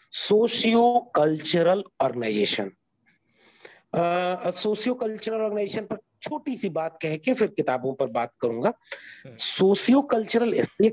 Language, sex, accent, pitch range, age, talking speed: Hindi, male, native, 165-255 Hz, 40-59, 100 wpm